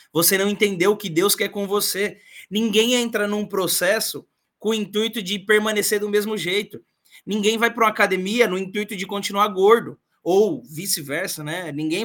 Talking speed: 175 wpm